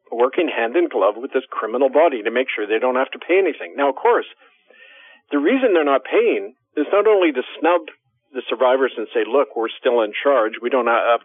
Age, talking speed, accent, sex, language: 50-69, 225 wpm, American, male, English